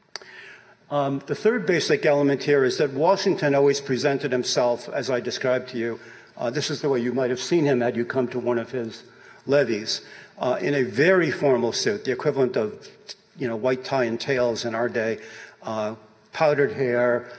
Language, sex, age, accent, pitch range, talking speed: English, male, 60-79, American, 125-155 Hz, 195 wpm